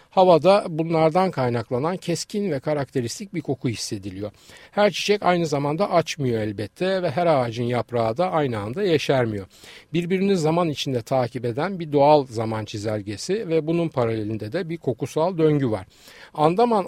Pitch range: 125-170 Hz